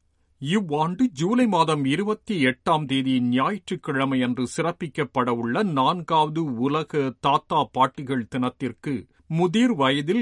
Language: Tamil